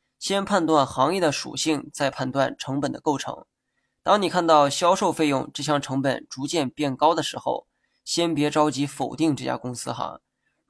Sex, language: male, Chinese